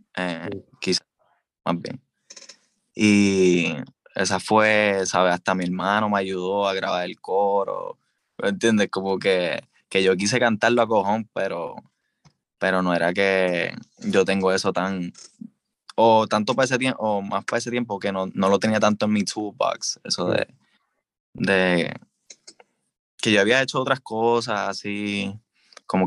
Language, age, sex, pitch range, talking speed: Spanish, 20-39, male, 95-110 Hz, 150 wpm